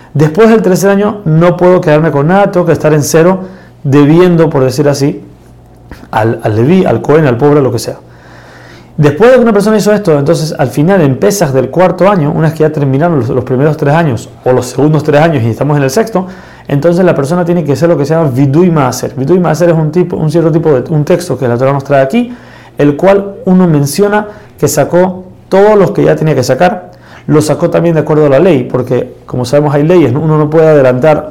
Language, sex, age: Spanish, male, 30-49